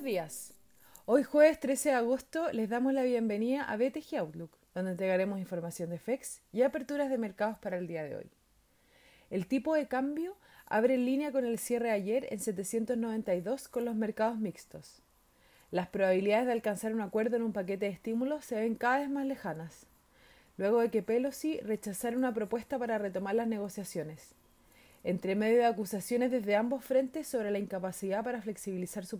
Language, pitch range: Spanish, 200-255 Hz